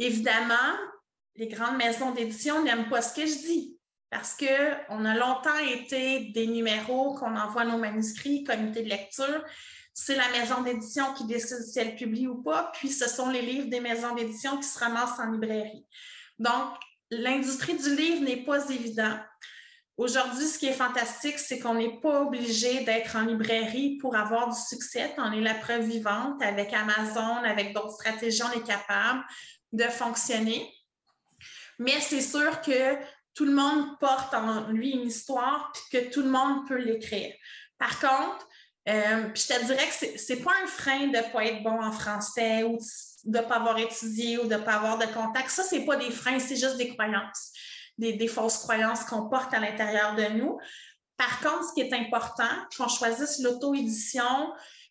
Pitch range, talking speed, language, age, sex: 225-270 Hz, 185 wpm, French, 30-49, female